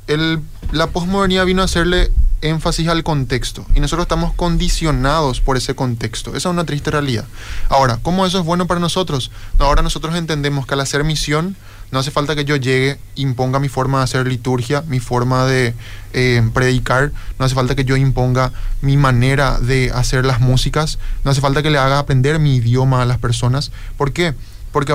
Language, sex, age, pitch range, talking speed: Spanish, male, 20-39, 125-150 Hz, 190 wpm